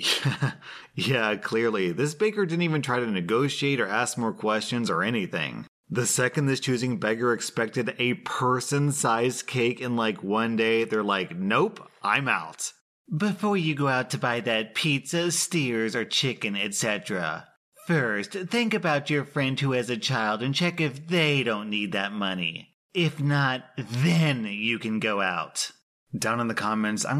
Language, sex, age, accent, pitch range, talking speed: English, male, 30-49, American, 110-145 Hz, 165 wpm